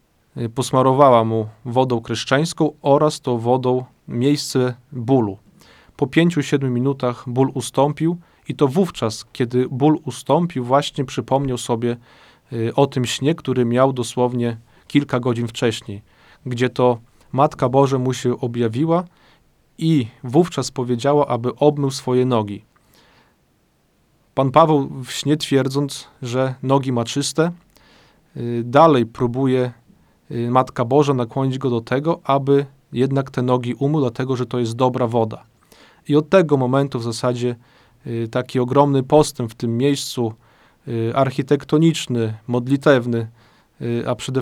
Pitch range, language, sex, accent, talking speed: 120-140 Hz, Polish, male, native, 120 wpm